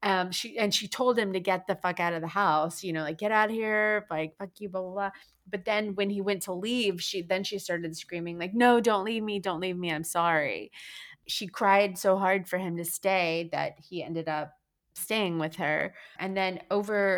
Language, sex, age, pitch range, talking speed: English, female, 30-49, 160-190 Hz, 240 wpm